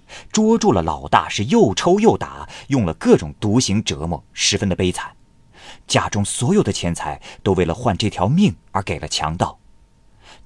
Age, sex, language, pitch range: 30-49, male, Chinese, 85-120 Hz